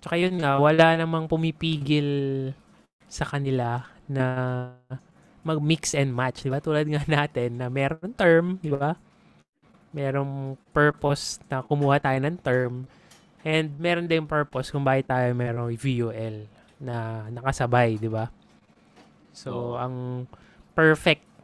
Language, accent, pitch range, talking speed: Filipino, native, 125-150 Hz, 125 wpm